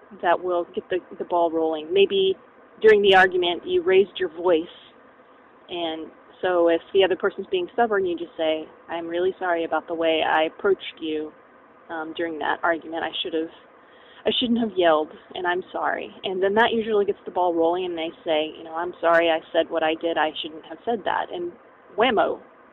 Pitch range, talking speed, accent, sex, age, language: 175-245 Hz, 195 wpm, American, female, 20-39, English